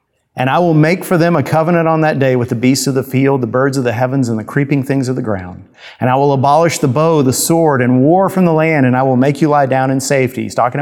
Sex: male